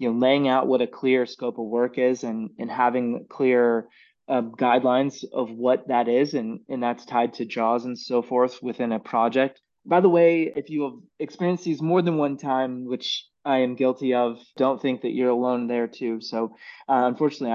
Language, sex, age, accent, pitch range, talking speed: English, male, 20-39, American, 120-140 Hz, 205 wpm